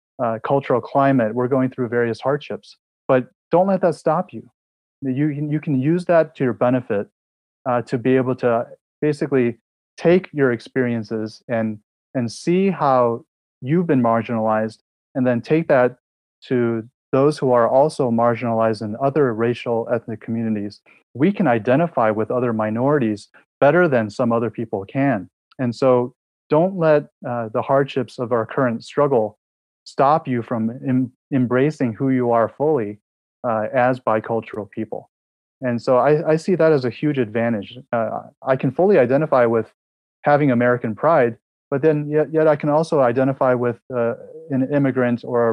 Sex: male